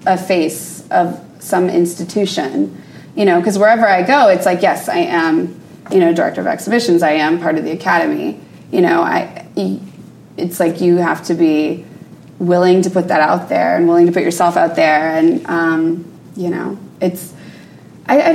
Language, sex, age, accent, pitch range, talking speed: English, female, 20-39, American, 180-250 Hz, 185 wpm